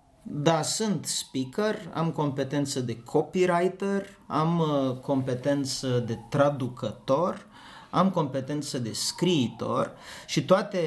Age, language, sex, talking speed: 30-49, Romanian, male, 95 wpm